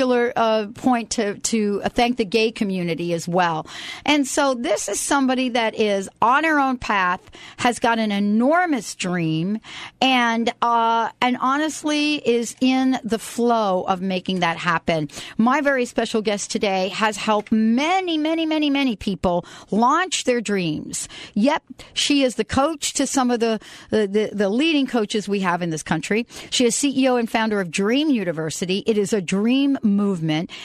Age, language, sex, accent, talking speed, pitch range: 50-69, English, female, American, 165 wpm, 205-270 Hz